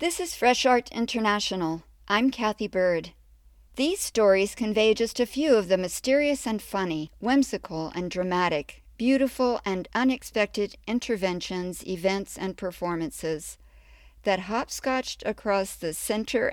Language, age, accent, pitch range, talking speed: English, 50-69, American, 165-215 Hz, 125 wpm